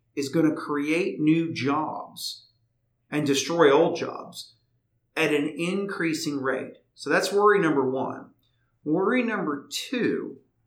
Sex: male